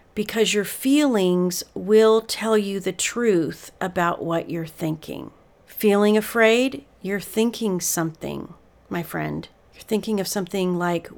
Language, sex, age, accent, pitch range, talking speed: English, female, 40-59, American, 180-220 Hz, 130 wpm